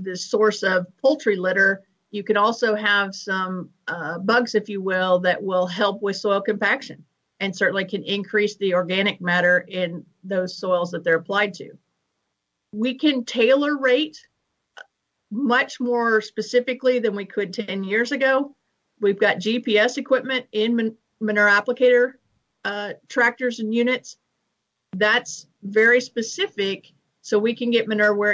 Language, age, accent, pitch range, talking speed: English, 50-69, American, 195-230 Hz, 145 wpm